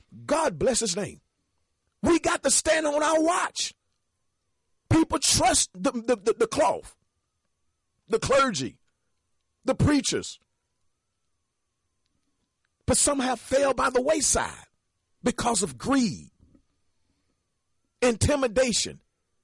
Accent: American